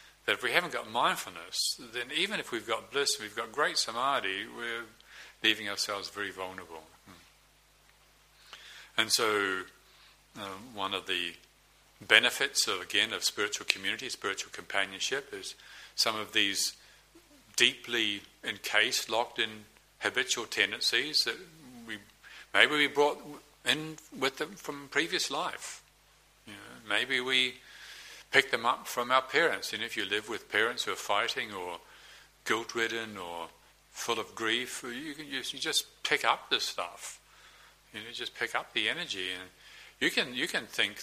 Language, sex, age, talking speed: English, male, 50-69, 155 wpm